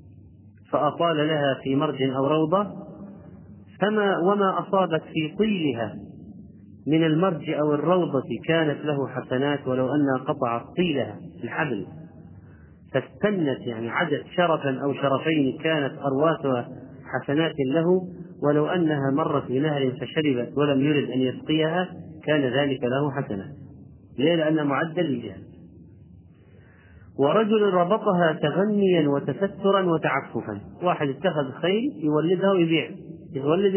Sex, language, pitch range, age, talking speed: male, Arabic, 130-175 Hz, 40-59, 110 wpm